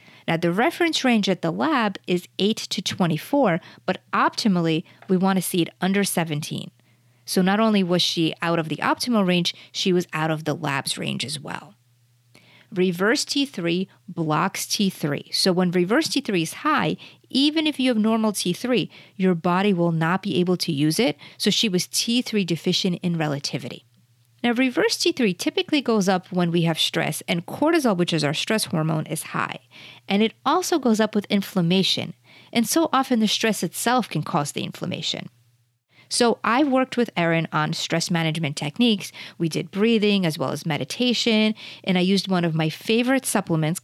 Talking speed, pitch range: 180 wpm, 160-220 Hz